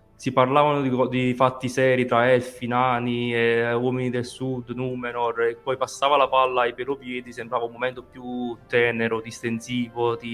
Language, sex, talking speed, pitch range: Italian, male, 165 wpm, 115-130 Hz